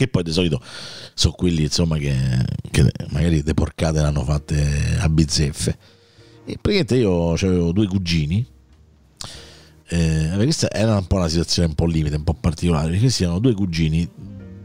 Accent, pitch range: native, 80-95 Hz